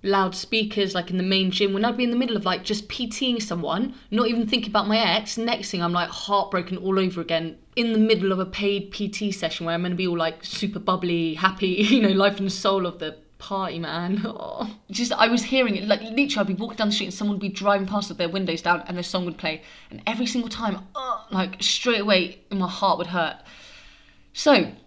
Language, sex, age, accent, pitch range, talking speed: English, female, 20-39, British, 180-220 Hz, 240 wpm